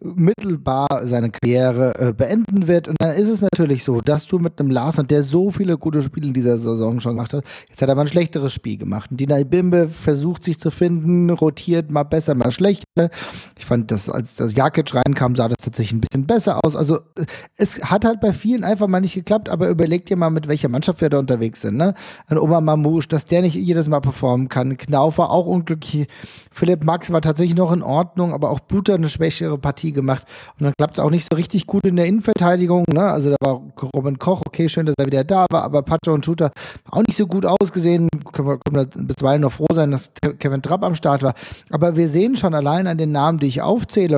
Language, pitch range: German, 140-175 Hz